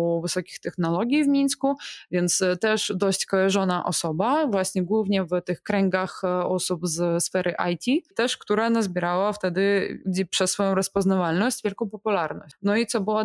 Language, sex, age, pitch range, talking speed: Polish, female, 20-39, 175-200 Hz, 150 wpm